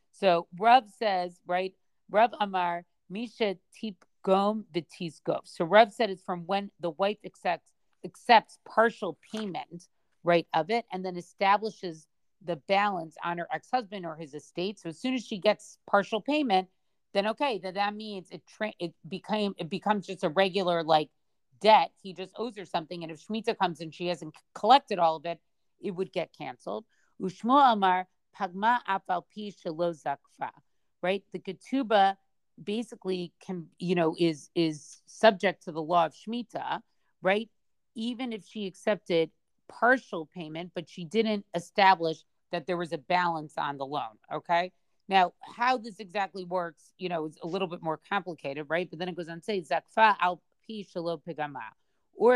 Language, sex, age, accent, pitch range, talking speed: English, female, 40-59, American, 170-210 Hz, 170 wpm